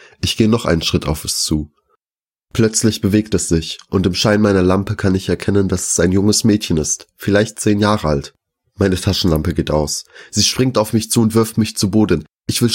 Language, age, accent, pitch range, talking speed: German, 30-49, German, 85-105 Hz, 215 wpm